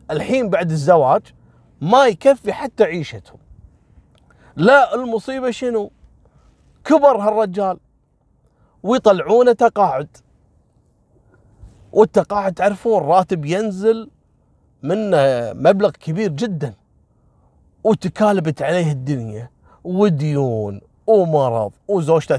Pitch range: 115-170 Hz